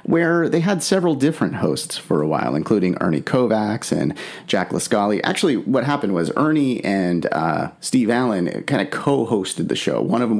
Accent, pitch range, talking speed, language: American, 105-145 Hz, 185 wpm, English